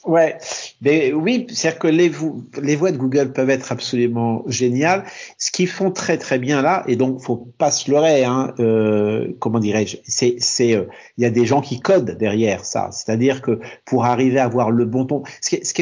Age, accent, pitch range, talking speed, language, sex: 50-69, French, 120-155 Hz, 220 wpm, French, male